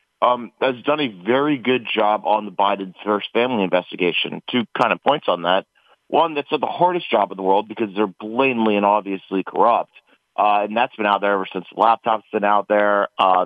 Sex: male